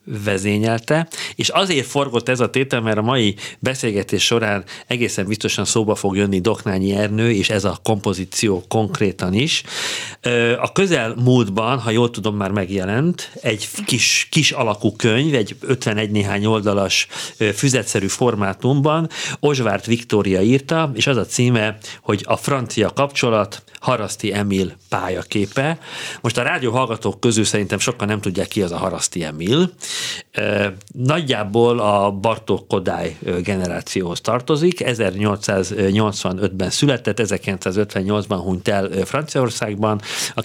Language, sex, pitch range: Hungarian, male, 100-125 Hz